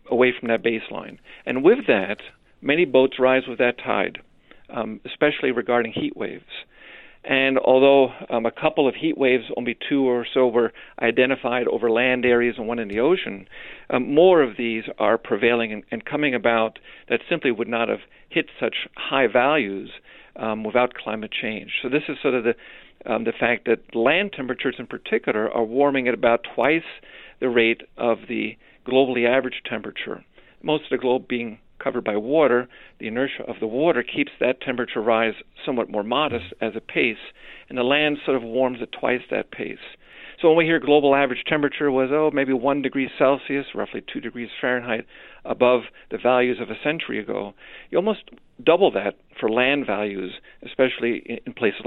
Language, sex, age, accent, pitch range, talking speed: English, male, 50-69, American, 115-135 Hz, 180 wpm